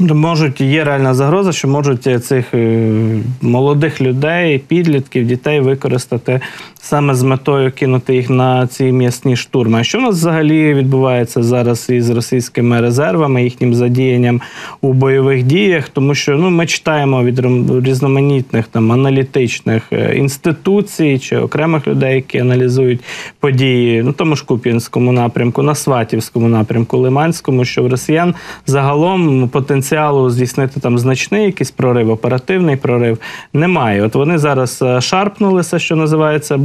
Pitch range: 125-145 Hz